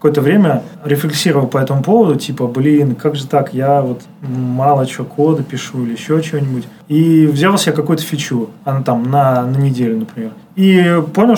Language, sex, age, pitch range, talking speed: Russian, male, 20-39, 140-175 Hz, 180 wpm